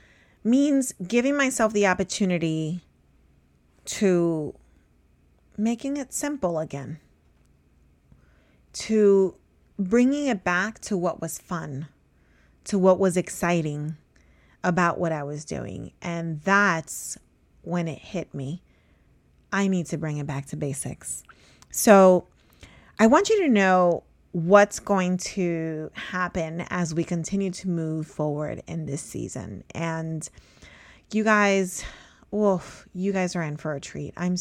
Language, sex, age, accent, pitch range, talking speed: English, female, 30-49, American, 155-200 Hz, 125 wpm